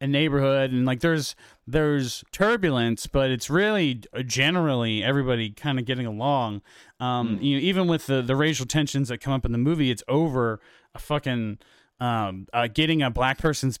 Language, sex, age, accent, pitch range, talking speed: English, male, 30-49, American, 115-150 Hz, 180 wpm